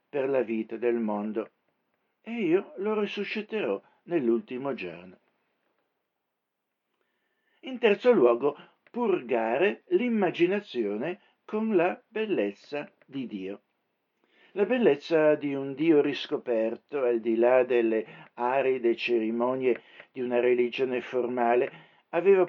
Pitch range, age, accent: 125-190 Hz, 60-79, native